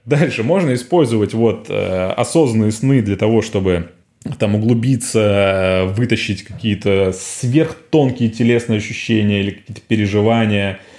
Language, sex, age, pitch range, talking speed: Russian, male, 20-39, 105-140 Hz, 105 wpm